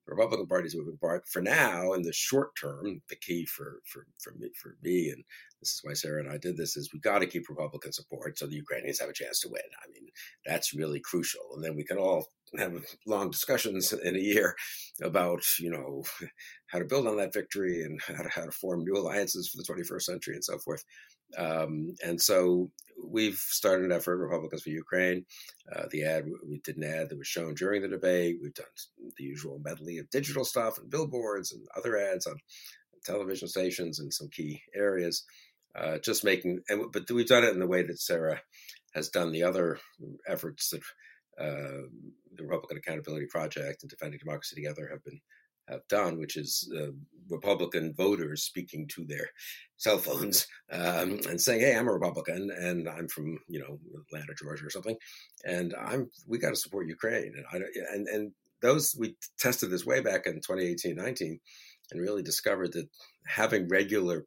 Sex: male